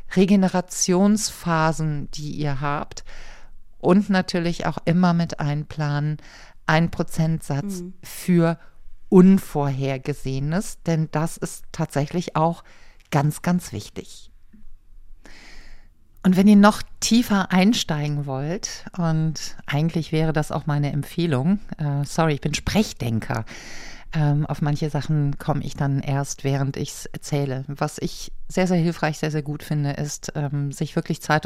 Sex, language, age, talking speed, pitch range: female, German, 50-69, 125 wpm, 145-180 Hz